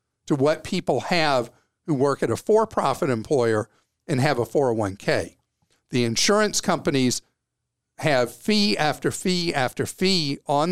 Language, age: English, 50-69